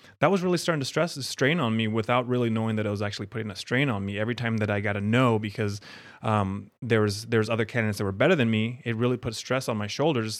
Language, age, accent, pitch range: English, 30-49, American, 110-140 Hz